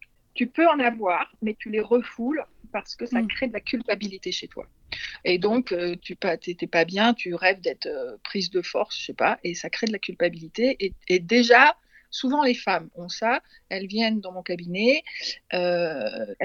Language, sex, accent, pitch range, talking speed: French, female, French, 180-240 Hz, 195 wpm